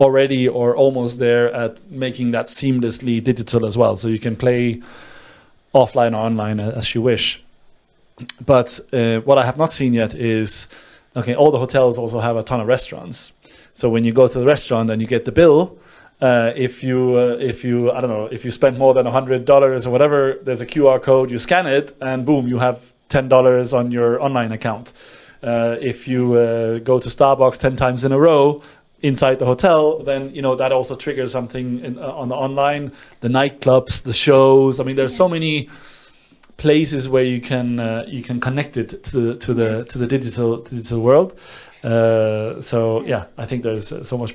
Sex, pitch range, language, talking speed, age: male, 120-135 Hz, English, 200 wpm, 30-49